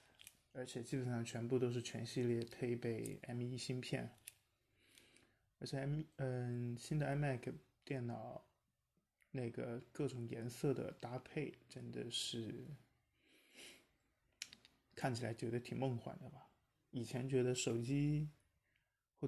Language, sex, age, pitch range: Chinese, male, 20-39, 120-135 Hz